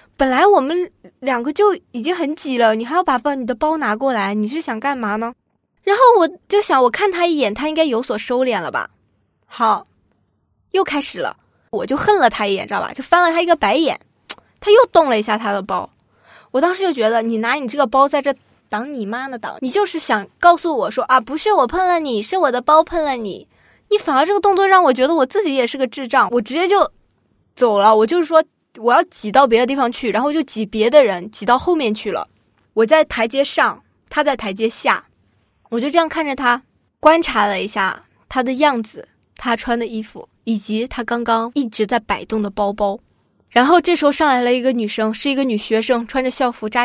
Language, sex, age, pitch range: Chinese, female, 20-39, 225-310 Hz